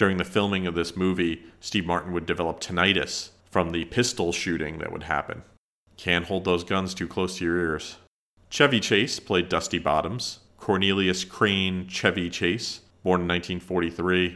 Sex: male